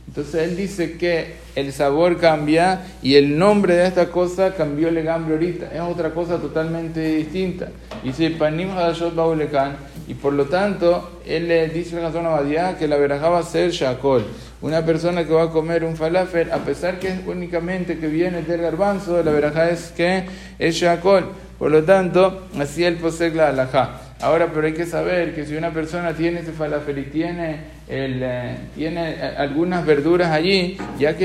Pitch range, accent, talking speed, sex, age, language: 150-175 Hz, Argentinian, 180 wpm, male, 50-69, Spanish